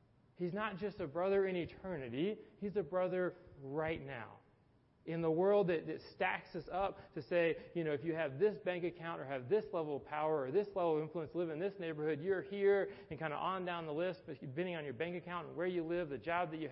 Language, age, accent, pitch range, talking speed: English, 40-59, American, 150-185 Hz, 240 wpm